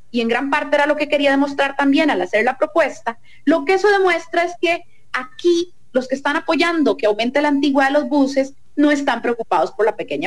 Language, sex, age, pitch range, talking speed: Spanish, female, 30-49, 235-330 Hz, 220 wpm